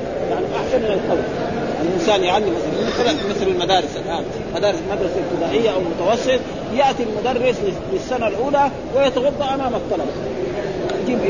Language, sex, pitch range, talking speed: Arabic, male, 205-250 Hz, 120 wpm